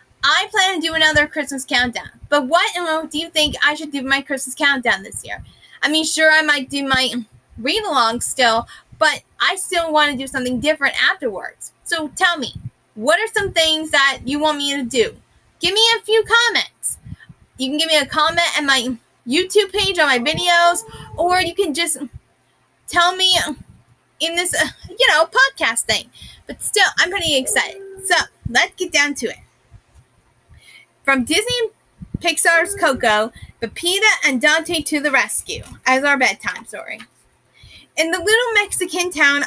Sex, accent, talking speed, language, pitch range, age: female, American, 170 wpm, English, 270-350 Hz, 20-39